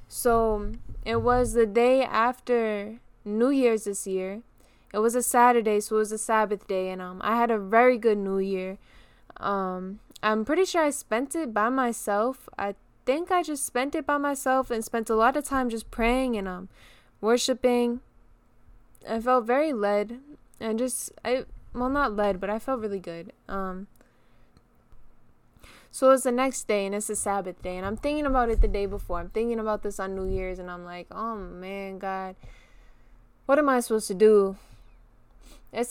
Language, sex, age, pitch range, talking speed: English, female, 10-29, 195-245 Hz, 185 wpm